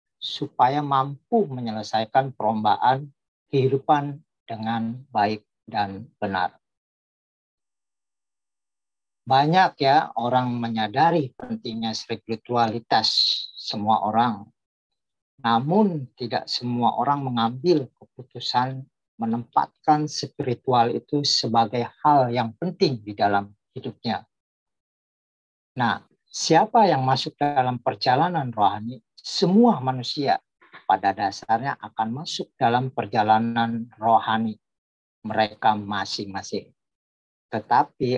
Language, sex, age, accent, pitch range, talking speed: Indonesian, male, 40-59, native, 110-135 Hz, 80 wpm